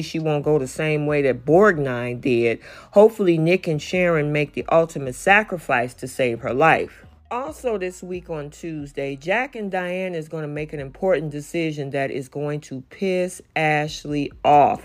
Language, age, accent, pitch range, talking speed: English, 40-59, American, 145-185 Hz, 175 wpm